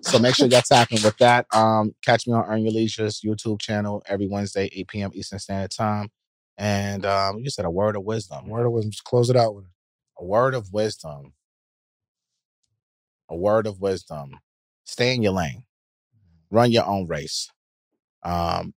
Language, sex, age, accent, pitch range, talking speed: English, male, 30-49, American, 85-105 Hz, 180 wpm